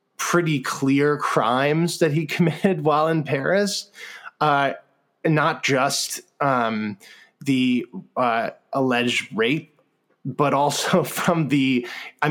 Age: 20-39